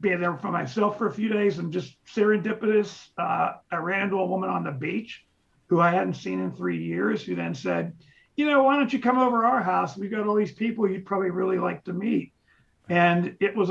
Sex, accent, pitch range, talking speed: male, American, 170-210 Hz, 230 wpm